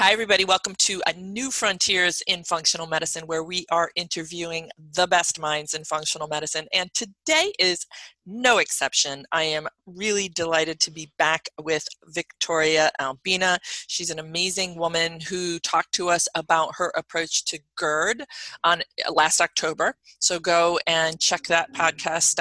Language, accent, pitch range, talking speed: English, American, 160-185 Hz, 155 wpm